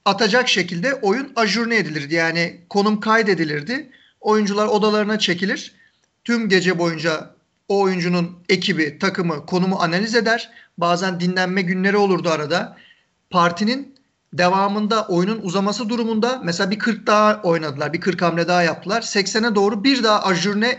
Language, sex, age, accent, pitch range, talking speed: Turkish, male, 50-69, native, 175-220 Hz, 135 wpm